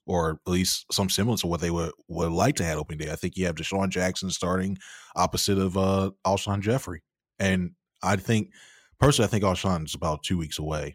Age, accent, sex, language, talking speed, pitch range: 20-39, American, male, English, 210 wpm, 85-95 Hz